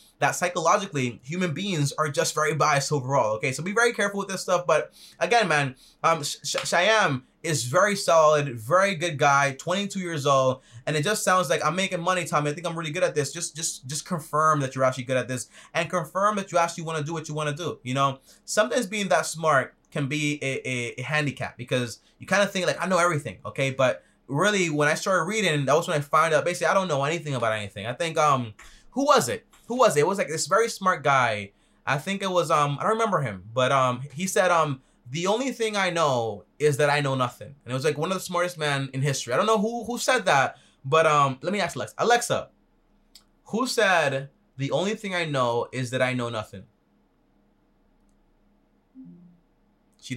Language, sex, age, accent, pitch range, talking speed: English, male, 20-39, American, 130-180 Hz, 230 wpm